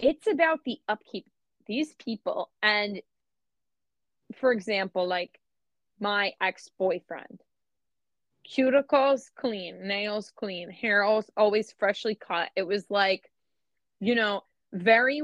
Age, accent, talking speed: 20-39, American, 105 wpm